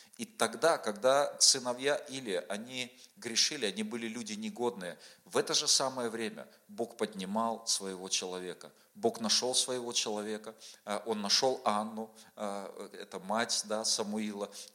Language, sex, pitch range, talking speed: Russian, male, 110-130 Hz, 125 wpm